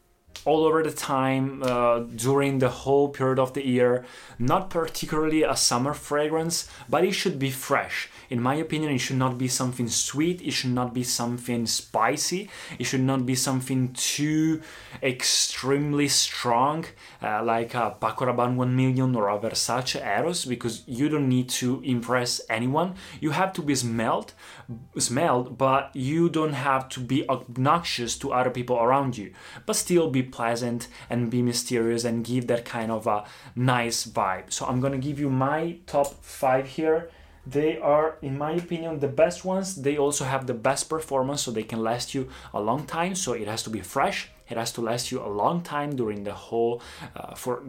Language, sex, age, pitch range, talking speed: Italian, male, 20-39, 120-145 Hz, 180 wpm